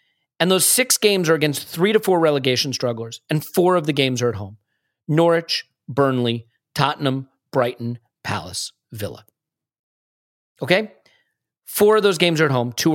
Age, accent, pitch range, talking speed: 40-59, American, 125-165 Hz, 160 wpm